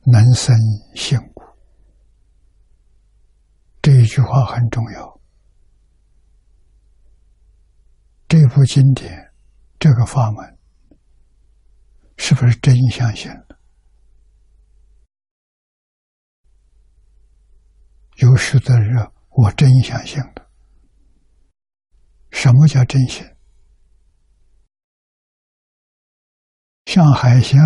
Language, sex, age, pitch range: Chinese, male, 60-79, 80-125 Hz